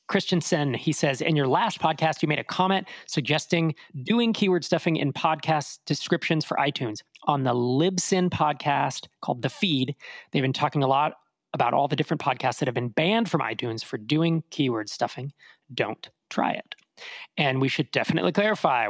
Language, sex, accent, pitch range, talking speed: English, male, American, 140-180 Hz, 175 wpm